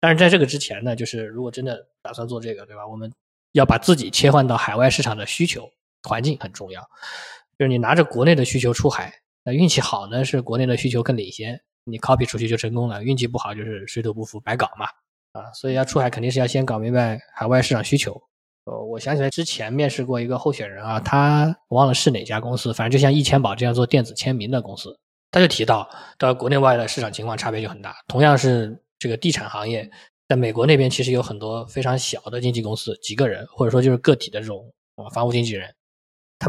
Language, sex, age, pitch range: Chinese, male, 20-39, 110-130 Hz